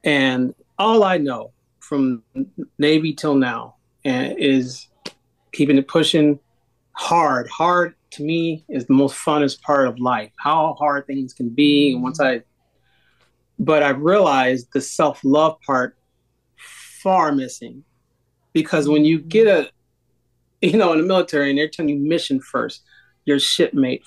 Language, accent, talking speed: English, American, 145 wpm